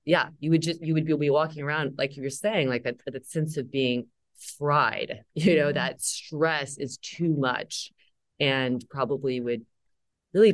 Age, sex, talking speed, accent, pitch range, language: 30-49, female, 175 wpm, American, 125-155 Hz, English